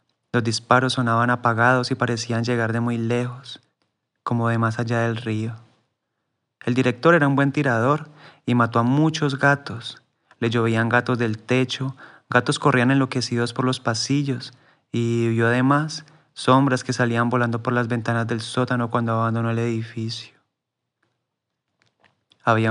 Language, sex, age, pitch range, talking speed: Spanish, male, 30-49, 115-130 Hz, 145 wpm